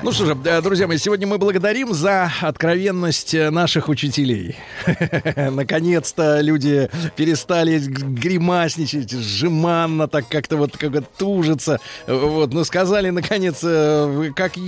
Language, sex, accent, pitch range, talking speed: Russian, male, native, 145-195 Hz, 100 wpm